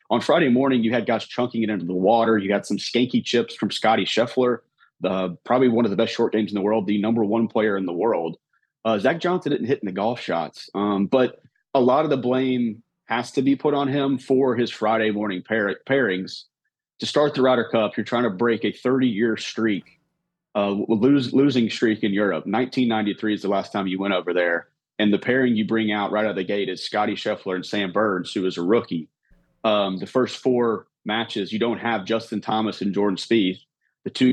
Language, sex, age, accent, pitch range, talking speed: English, male, 30-49, American, 100-120 Hz, 225 wpm